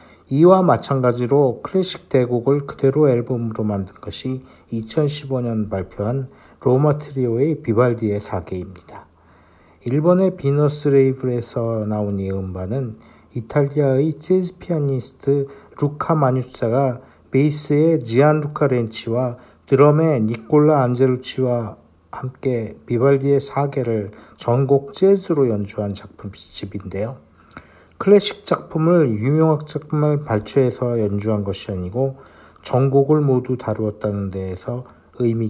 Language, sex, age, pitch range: Korean, male, 50-69, 105-145 Hz